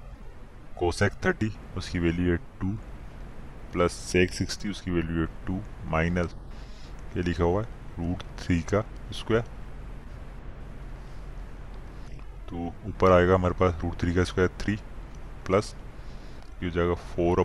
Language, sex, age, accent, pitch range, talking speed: Hindi, male, 20-39, native, 85-100 Hz, 120 wpm